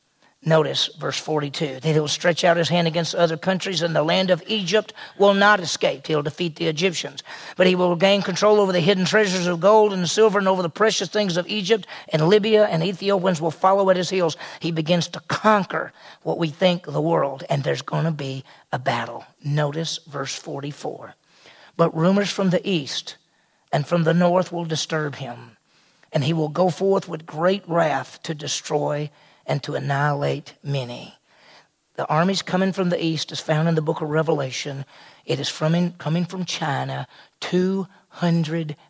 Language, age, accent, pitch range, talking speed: English, 40-59, American, 150-185 Hz, 185 wpm